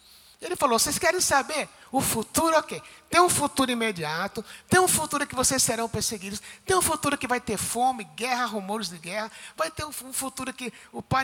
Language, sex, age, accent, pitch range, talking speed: Portuguese, male, 60-79, Brazilian, 185-260 Hz, 200 wpm